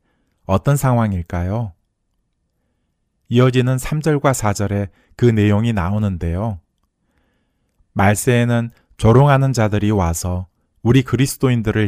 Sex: male